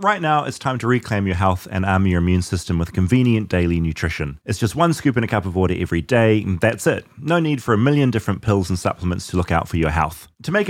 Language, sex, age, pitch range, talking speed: English, male, 30-49, 95-130 Hz, 270 wpm